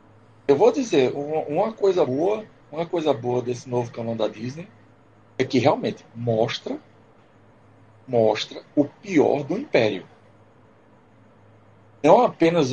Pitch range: 110-135 Hz